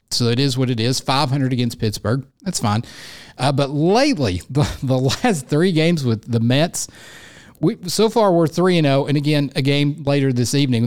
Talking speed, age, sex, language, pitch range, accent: 205 wpm, 50-69, male, English, 120-155 Hz, American